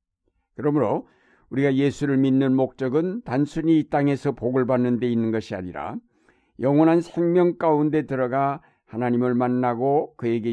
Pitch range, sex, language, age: 115-150 Hz, male, Korean, 60-79